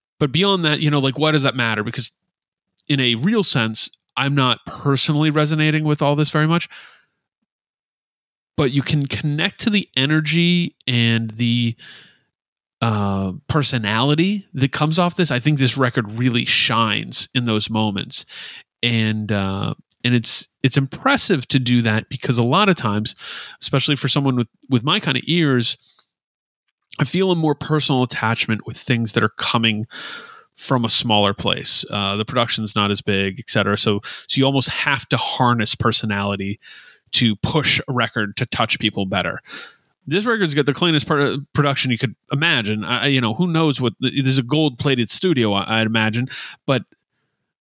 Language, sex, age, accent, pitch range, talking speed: English, male, 30-49, American, 115-155 Hz, 170 wpm